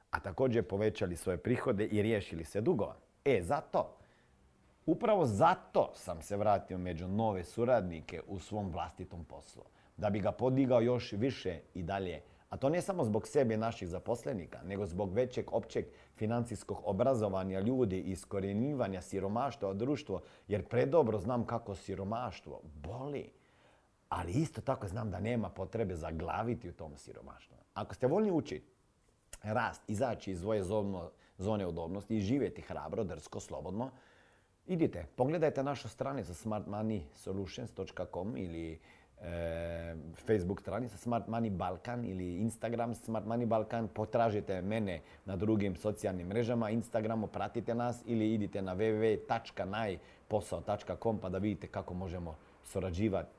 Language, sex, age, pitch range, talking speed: Croatian, male, 40-59, 90-115 Hz, 135 wpm